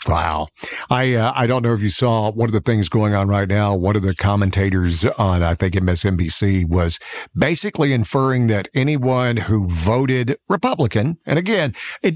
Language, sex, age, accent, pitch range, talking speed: English, male, 50-69, American, 120-175 Hz, 175 wpm